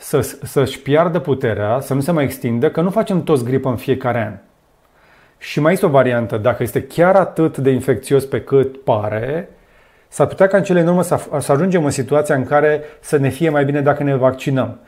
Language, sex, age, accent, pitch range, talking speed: Romanian, male, 30-49, native, 125-155 Hz, 215 wpm